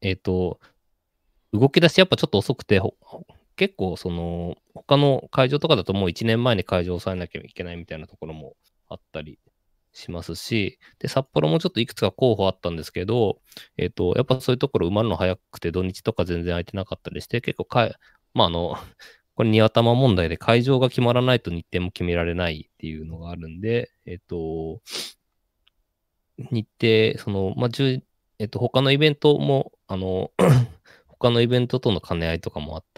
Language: Japanese